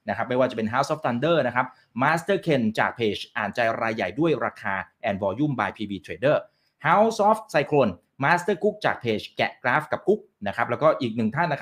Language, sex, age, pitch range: Thai, male, 30-49, 110-175 Hz